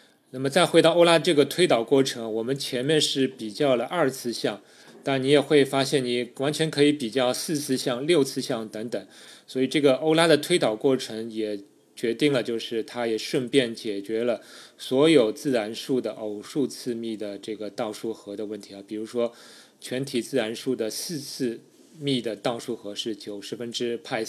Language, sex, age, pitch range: Chinese, male, 20-39, 110-140 Hz